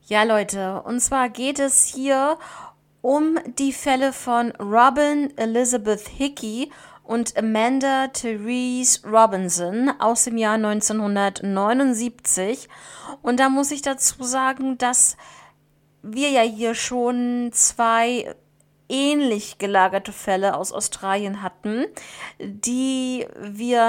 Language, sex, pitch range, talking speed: German, female, 205-260 Hz, 105 wpm